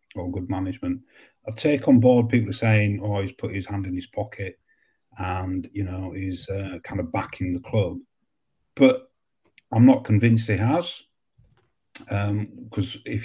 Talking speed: 165 wpm